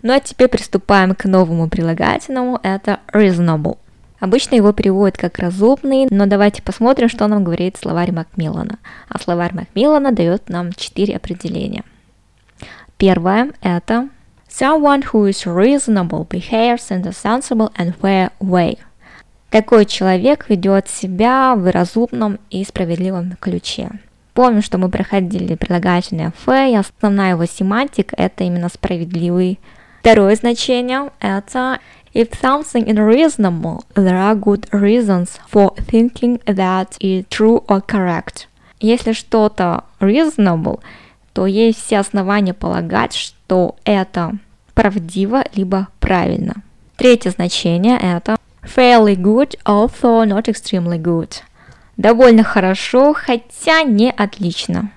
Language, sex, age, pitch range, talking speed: Russian, female, 20-39, 185-235 Hz, 105 wpm